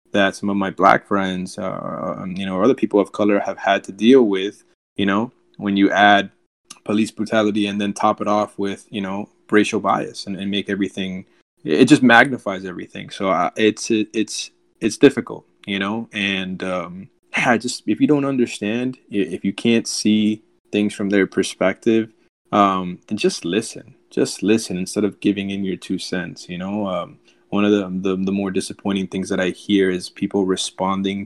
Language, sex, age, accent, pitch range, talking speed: English, male, 20-39, American, 100-110 Hz, 190 wpm